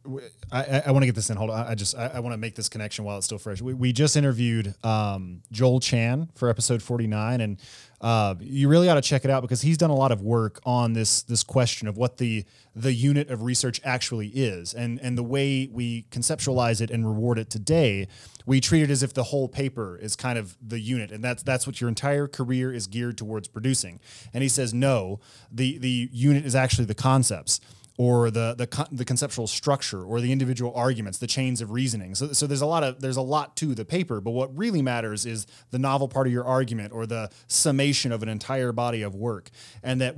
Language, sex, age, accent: English, male, 20-39, American